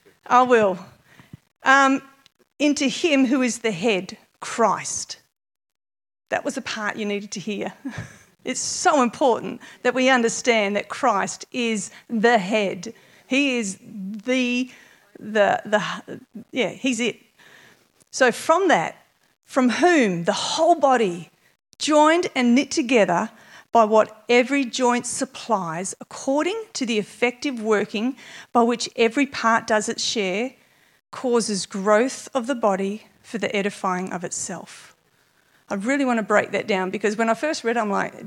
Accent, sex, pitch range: Australian, female, 210-265 Hz